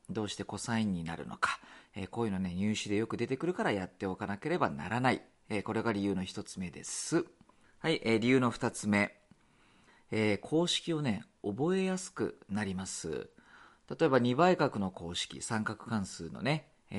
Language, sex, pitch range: Japanese, male, 100-150 Hz